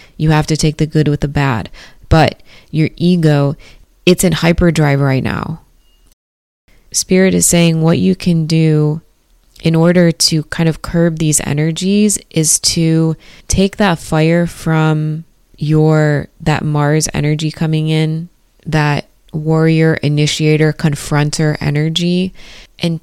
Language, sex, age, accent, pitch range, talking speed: English, female, 20-39, American, 145-165 Hz, 130 wpm